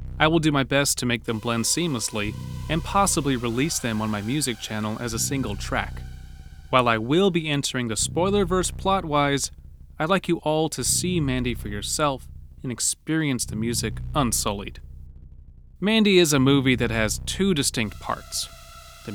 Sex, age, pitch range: male, 30-49, 110-145 Hz